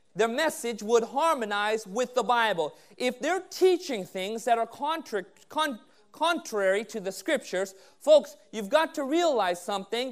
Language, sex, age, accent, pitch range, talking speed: English, male, 30-49, American, 220-285 Hz, 135 wpm